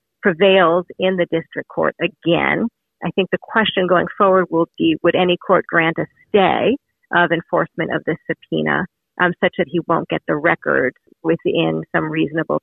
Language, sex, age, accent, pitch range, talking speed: English, female, 40-59, American, 160-185 Hz, 170 wpm